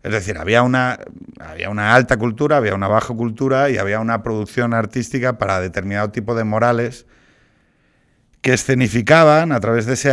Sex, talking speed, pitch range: male, 165 wpm, 105-140 Hz